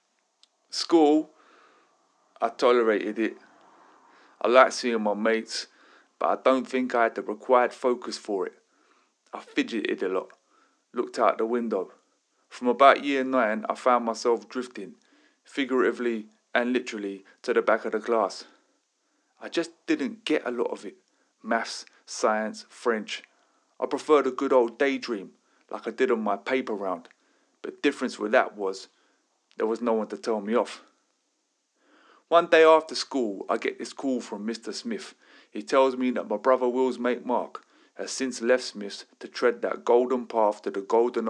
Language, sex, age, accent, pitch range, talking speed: English, male, 30-49, British, 115-145 Hz, 165 wpm